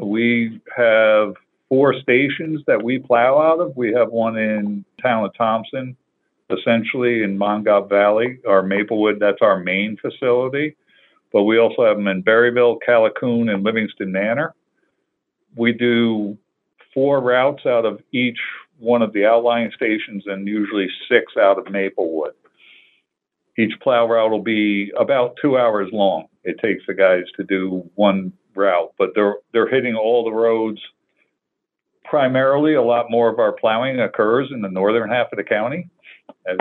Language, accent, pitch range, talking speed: English, American, 100-120 Hz, 155 wpm